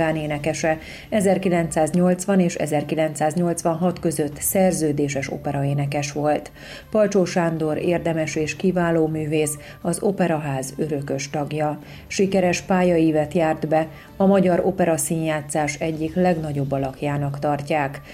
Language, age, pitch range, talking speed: Hungarian, 40-59, 150-180 Hz, 95 wpm